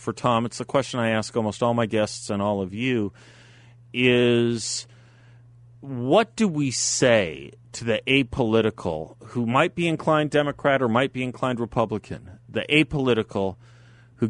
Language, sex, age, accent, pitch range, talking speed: English, male, 40-59, American, 100-125 Hz, 150 wpm